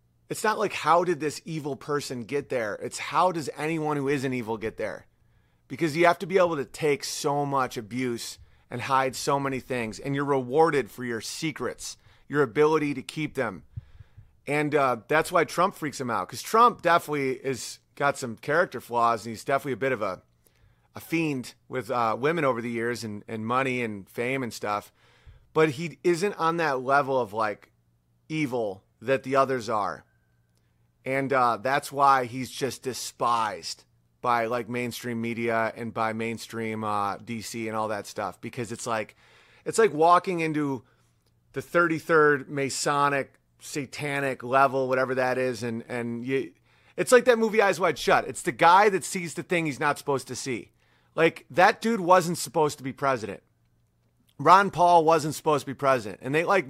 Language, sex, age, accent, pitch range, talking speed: English, male, 30-49, American, 120-150 Hz, 180 wpm